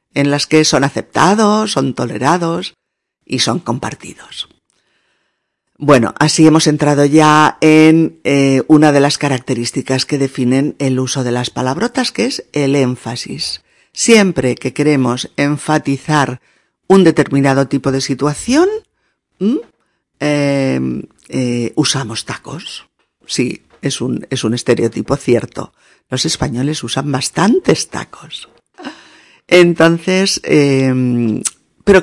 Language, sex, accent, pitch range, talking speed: Spanish, female, Spanish, 125-160 Hz, 110 wpm